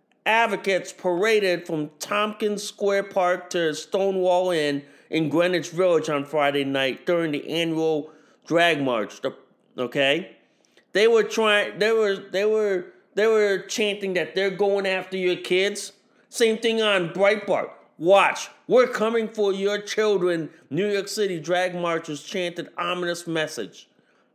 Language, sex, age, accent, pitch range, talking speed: English, male, 30-49, American, 170-210 Hz, 140 wpm